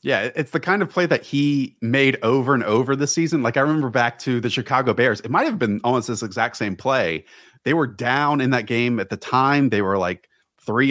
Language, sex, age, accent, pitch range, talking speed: English, male, 30-49, American, 110-135 Hz, 240 wpm